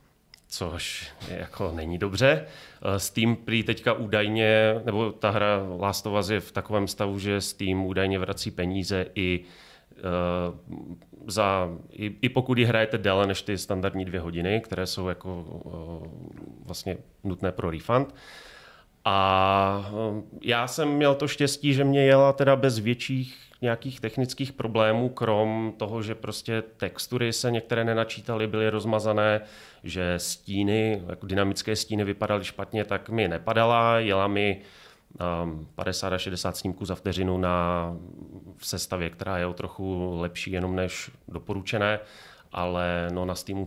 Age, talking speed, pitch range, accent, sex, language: 30-49, 135 wpm, 90-110 Hz, native, male, Czech